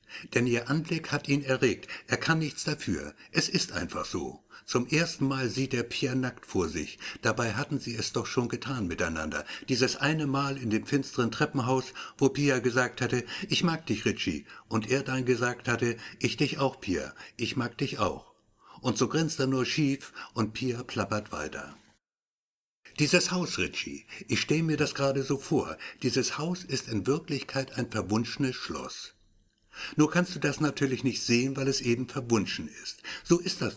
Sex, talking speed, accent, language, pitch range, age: male, 180 wpm, German, German, 125-150 Hz, 60-79